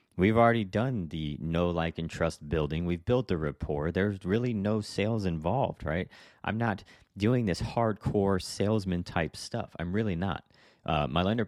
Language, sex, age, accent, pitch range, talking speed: English, male, 30-49, American, 75-100 Hz, 175 wpm